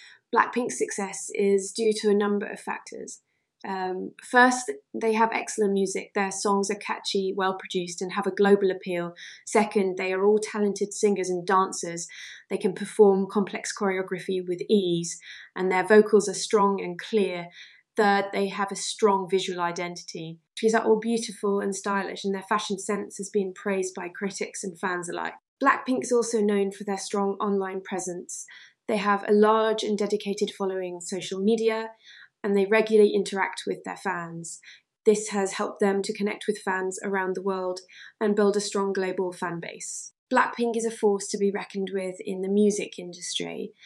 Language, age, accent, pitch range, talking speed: English, 20-39, British, 190-210 Hz, 170 wpm